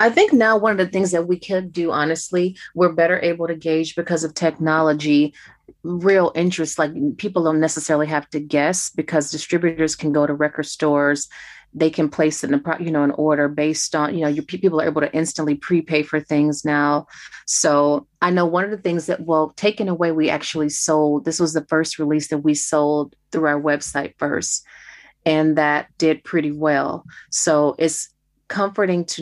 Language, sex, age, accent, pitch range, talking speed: English, female, 30-49, American, 150-170 Hz, 200 wpm